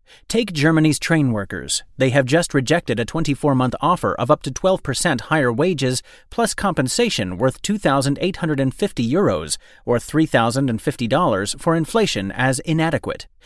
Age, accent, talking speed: 30-49, American, 125 wpm